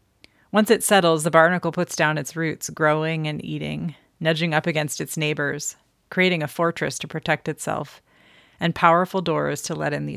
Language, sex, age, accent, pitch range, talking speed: English, female, 30-49, American, 150-175 Hz, 175 wpm